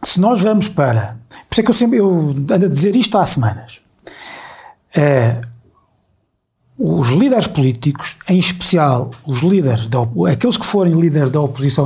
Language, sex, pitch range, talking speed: Portuguese, male, 130-180 Hz, 160 wpm